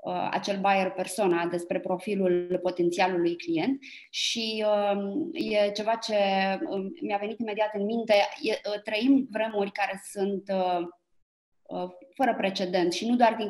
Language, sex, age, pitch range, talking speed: Romanian, female, 20-39, 195-225 Hz, 145 wpm